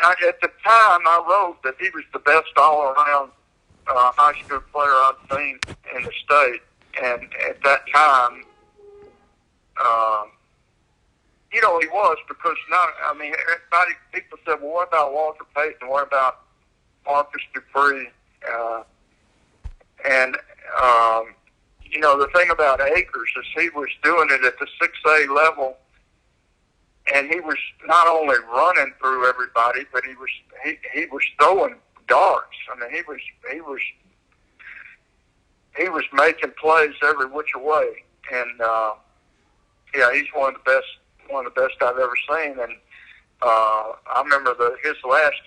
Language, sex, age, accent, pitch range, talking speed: English, male, 60-79, American, 130-170 Hz, 150 wpm